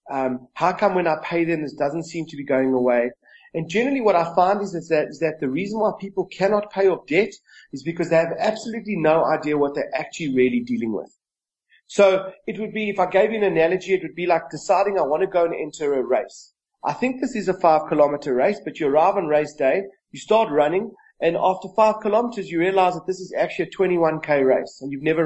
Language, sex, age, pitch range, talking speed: English, male, 30-49, 155-205 Hz, 235 wpm